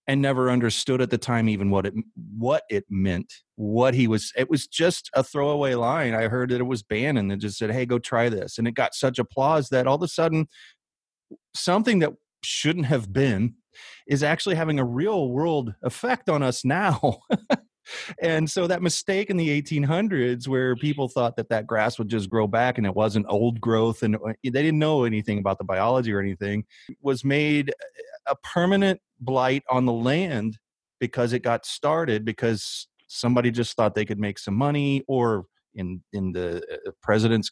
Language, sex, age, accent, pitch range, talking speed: English, male, 30-49, American, 110-145 Hz, 185 wpm